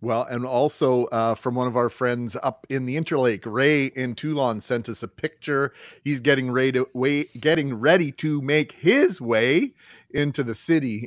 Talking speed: 170 wpm